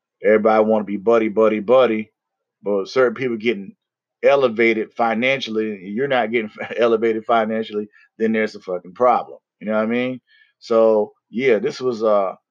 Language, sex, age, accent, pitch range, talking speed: English, male, 30-49, American, 105-125 Hz, 160 wpm